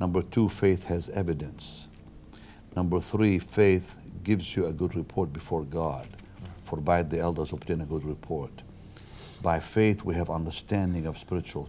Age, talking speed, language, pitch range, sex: 60-79, 155 wpm, English, 85-110 Hz, male